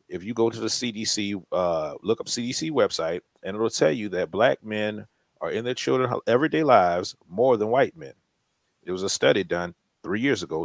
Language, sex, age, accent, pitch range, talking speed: English, male, 40-59, American, 95-115 Hz, 205 wpm